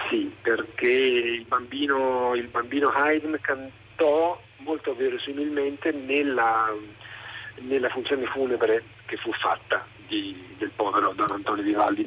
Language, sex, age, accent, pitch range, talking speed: Italian, male, 40-59, native, 120-175 Hz, 115 wpm